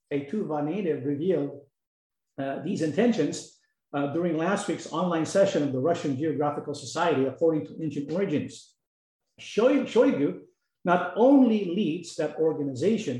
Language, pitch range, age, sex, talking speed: English, 145-205 Hz, 50-69, male, 125 wpm